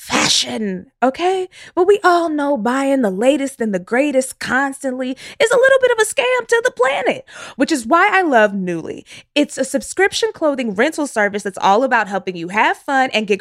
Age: 20-39